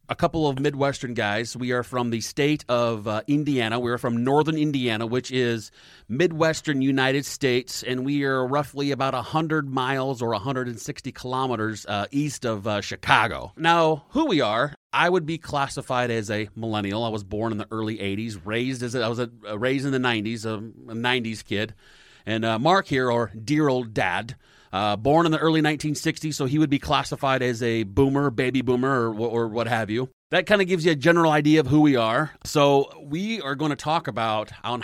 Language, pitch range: English, 115-145 Hz